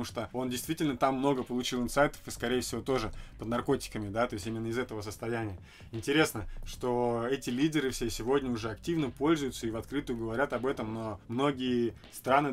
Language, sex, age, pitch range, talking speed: Russian, male, 20-39, 115-135 Hz, 180 wpm